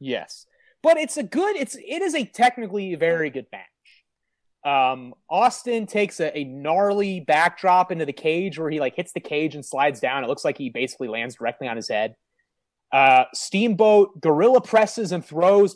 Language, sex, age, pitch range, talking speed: English, male, 30-49, 145-200 Hz, 185 wpm